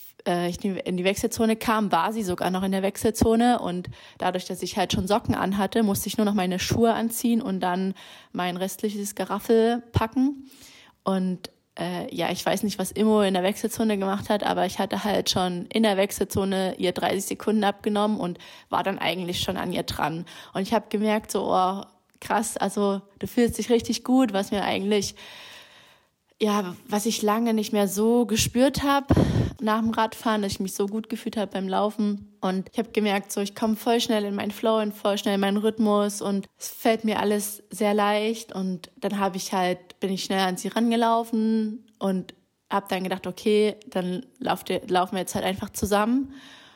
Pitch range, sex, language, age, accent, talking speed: 190-225 Hz, female, German, 20-39, German, 200 wpm